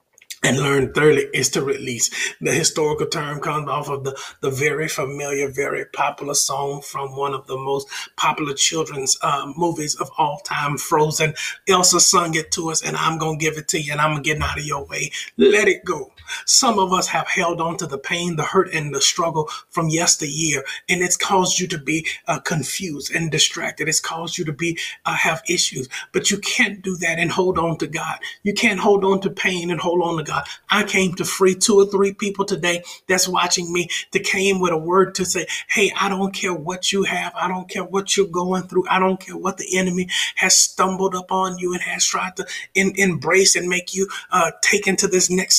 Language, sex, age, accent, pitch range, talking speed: English, male, 30-49, American, 165-195 Hz, 220 wpm